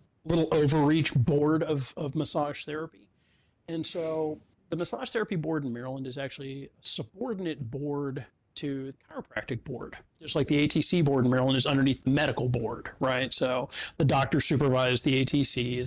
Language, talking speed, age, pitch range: English, 165 wpm, 40-59, 135-160 Hz